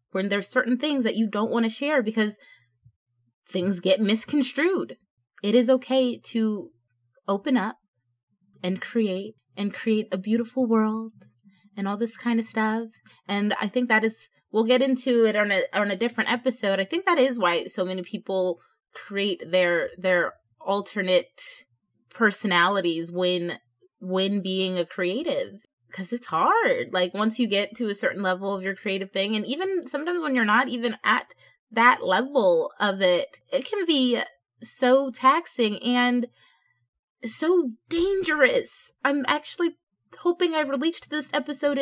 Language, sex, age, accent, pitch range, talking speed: English, female, 20-39, American, 190-265 Hz, 155 wpm